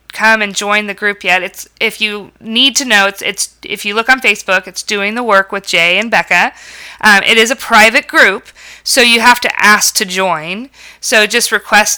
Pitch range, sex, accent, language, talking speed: 185-220 Hz, female, American, English, 215 wpm